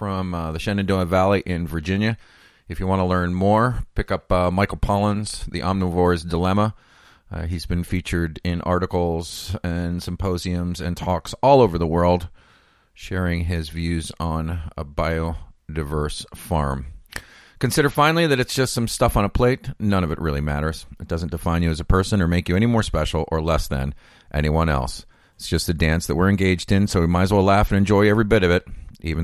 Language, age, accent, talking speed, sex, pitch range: English, 40-59, American, 195 wpm, male, 80-100 Hz